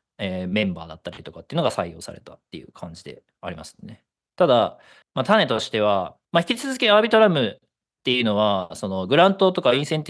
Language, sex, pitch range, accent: Japanese, male, 100-140 Hz, native